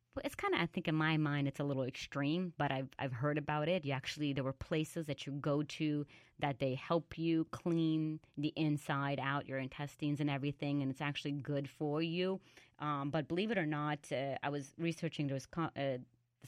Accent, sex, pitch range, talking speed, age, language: American, female, 140-165 Hz, 210 wpm, 30-49, English